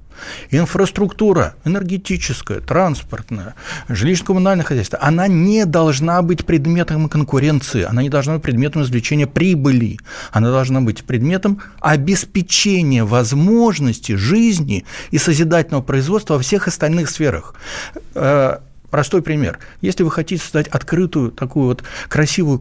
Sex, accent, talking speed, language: male, native, 110 wpm, Russian